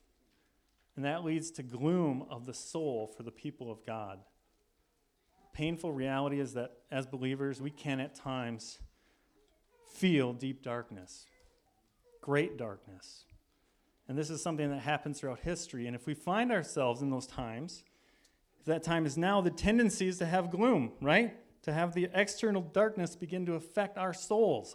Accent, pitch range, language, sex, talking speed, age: American, 120-170 Hz, English, male, 160 wpm, 40-59